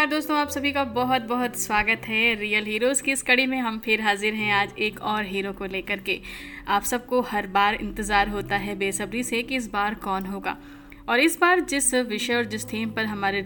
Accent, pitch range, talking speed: native, 210-250 Hz, 220 wpm